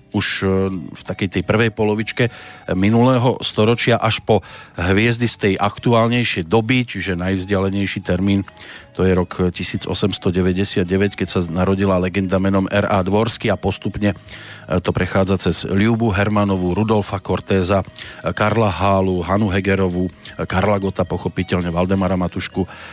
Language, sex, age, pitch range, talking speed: Slovak, male, 40-59, 95-115 Hz, 125 wpm